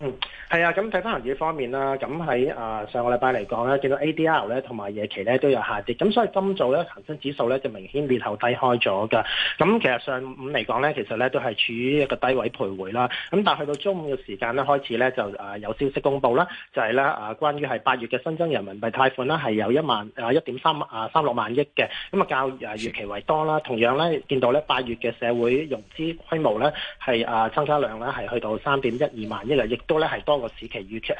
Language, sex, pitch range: Chinese, male, 120-155 Hz